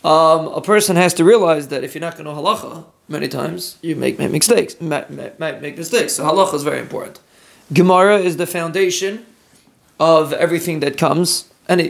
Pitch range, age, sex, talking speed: 150-180 Hz, 30-49, male, 185 wpm